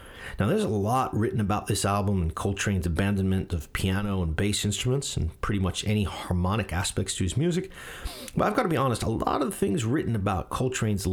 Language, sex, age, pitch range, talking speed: English, male, 40-59, 90-125 Hz, 210 wpm